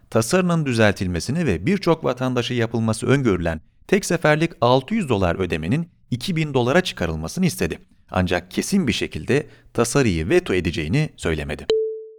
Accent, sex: native, male